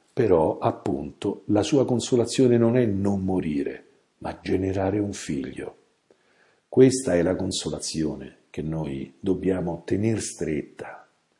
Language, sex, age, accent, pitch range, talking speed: Italian, male, 50-69, native, 90-120 Hz, 115 wpm